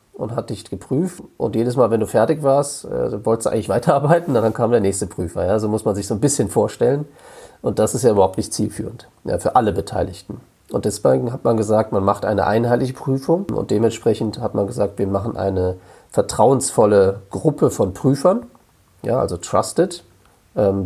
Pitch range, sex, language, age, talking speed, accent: 105-135 Hz, male, German, 40-59, 185 wpm, German